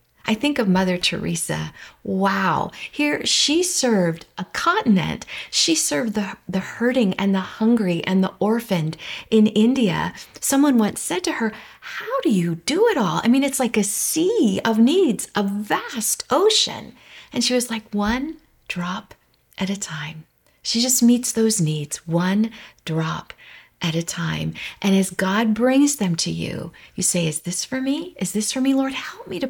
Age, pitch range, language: 40-59, 175-245 Hz, English